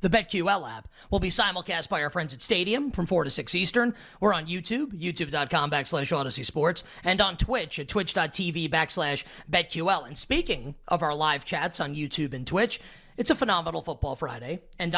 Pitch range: 165-220 Hz